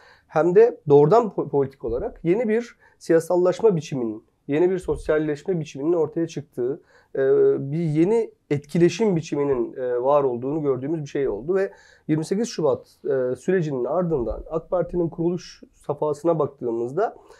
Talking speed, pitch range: 120 wpm, 145-195 Hz